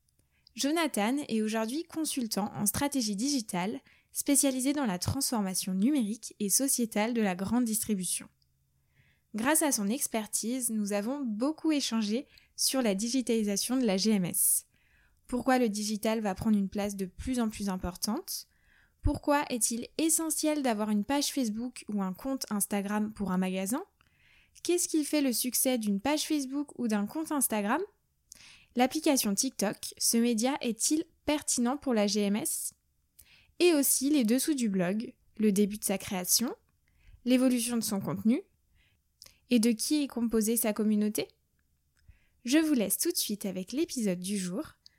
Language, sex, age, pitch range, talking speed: French, female, 10-29, 205-270 Hz, 150 wpm